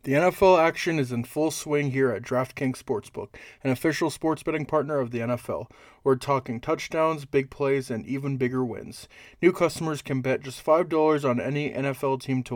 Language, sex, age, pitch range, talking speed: English, male, 20-39, 135-155 Hz, 185 wpm